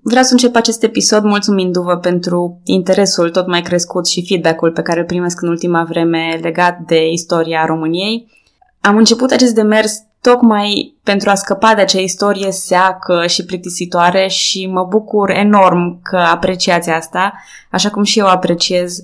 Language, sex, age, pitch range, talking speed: Romanian, female, 20-39, 170-215 Hz, 160 wpm